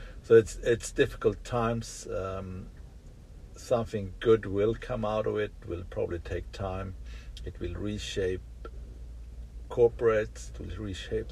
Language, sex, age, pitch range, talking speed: English, male, 60-79, 90-105 Hz, 125 wpm